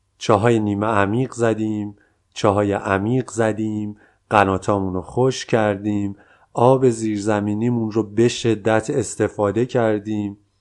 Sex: male